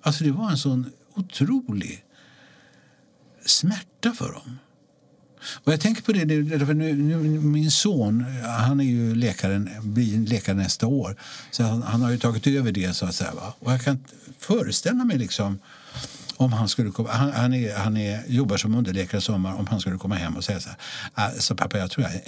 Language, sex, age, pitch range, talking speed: English, male, 60-79, 110-150 Hz, 200 wpm